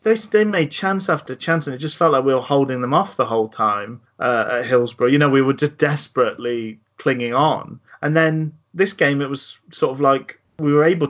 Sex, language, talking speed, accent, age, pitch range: male, English, 225 wpm, British, 30-49, 120-150 Hz